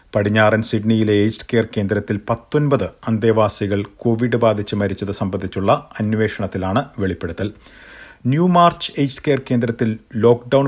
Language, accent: Malayalam, native